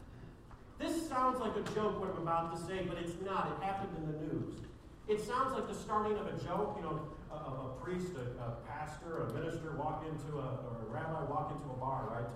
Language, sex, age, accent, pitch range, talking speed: English, male, 50-69, American, 145-215 Hz, 230 wpm